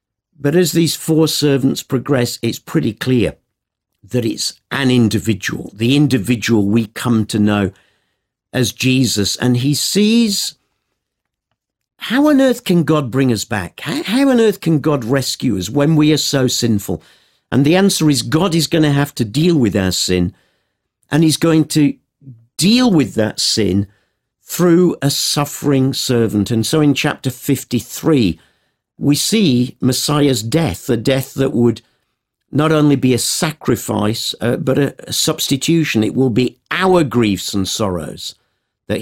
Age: 50-69